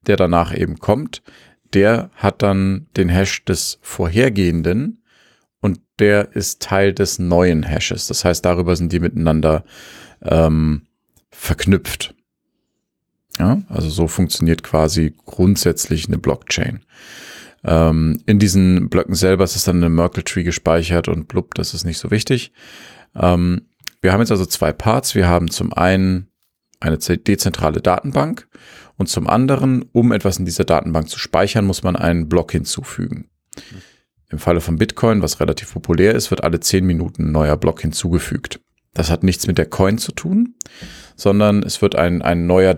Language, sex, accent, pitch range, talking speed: German, male, German, 85-100 Hz, 155 wpm